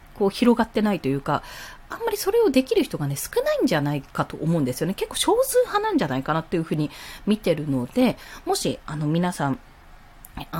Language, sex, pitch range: Japanese, female, 150-245 Hz